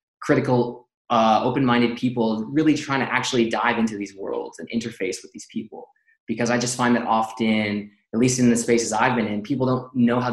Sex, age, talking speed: male, 20-39, 205 wpm